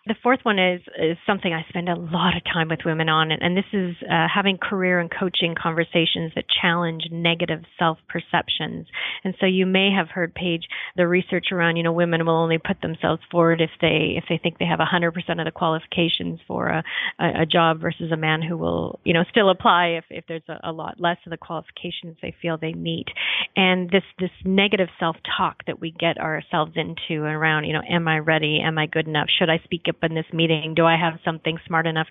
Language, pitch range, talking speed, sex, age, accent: English, 160-190 Hz, 225 wpm, female, 30-49, American